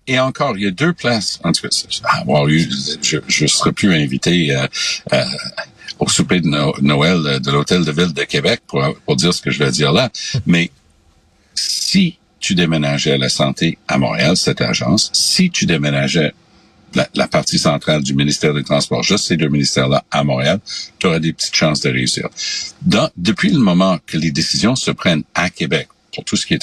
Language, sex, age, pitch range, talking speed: French, male, 60-79, 70-95 Hz, 200 wpm